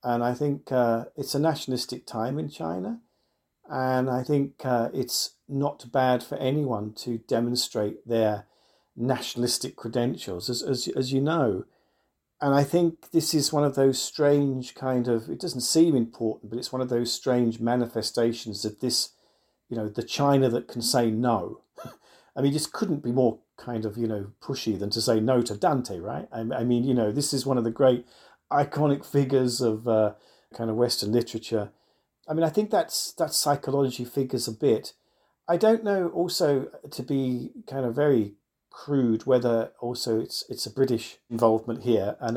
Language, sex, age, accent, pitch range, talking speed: English, male, 50-69, British, 115-140 Hz, 180 wpm